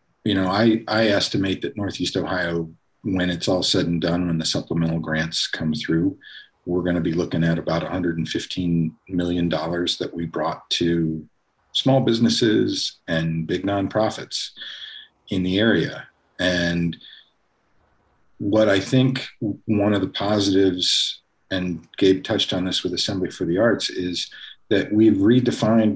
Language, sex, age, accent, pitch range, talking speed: English, male, 50-69, American, 85-110 Hz, 145 wpm